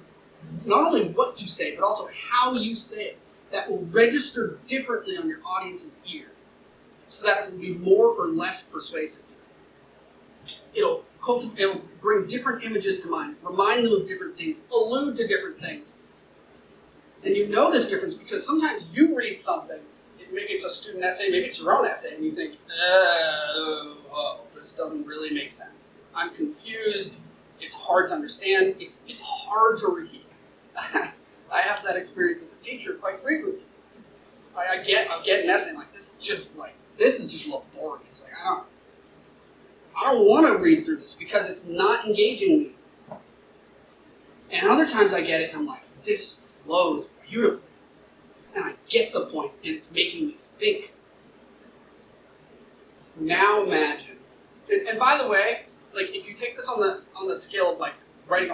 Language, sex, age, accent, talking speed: English, male, 30-49, American, 170 wpm